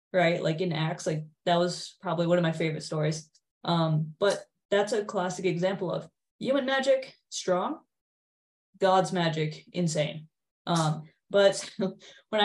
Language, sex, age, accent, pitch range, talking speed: English, female, 20-39, American, 165-195 Hz, 140 wpm